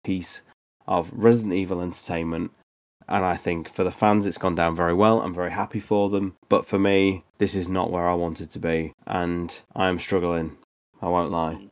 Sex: male